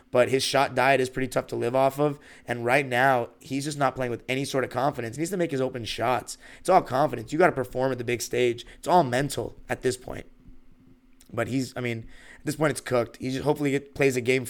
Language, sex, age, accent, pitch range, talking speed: English, male, 20-39, American, 120-140 Hz, 260 wpm